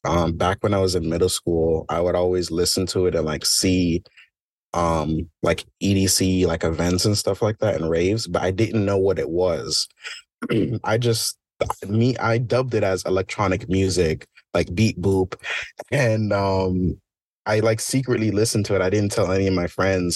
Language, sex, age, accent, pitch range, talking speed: English, male, 20-39, American, 90-110 Hz, 185 wpm